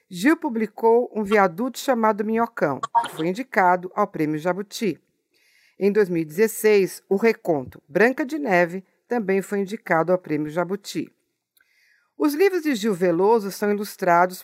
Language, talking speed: Portuguese, 135 wpm